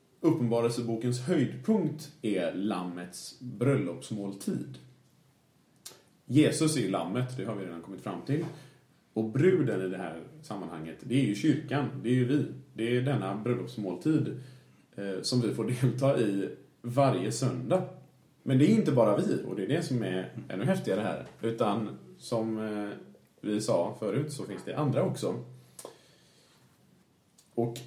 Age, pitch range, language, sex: 30-49, 105-135 Hz, Swedish, male